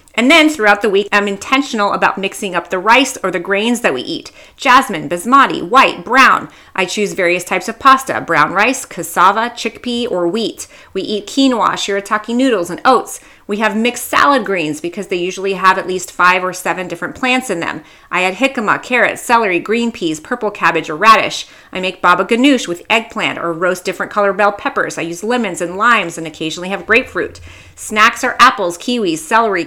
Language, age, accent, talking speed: English, 30-49, American, 195 wpm